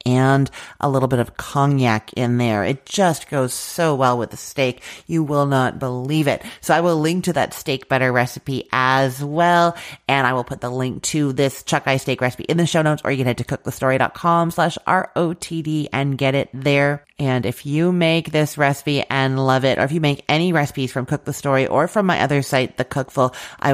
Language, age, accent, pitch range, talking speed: English, 30-49, American, 125-155 Hz, 215 wpm